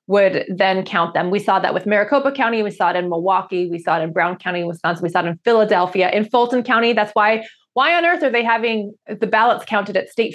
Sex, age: female, 20-39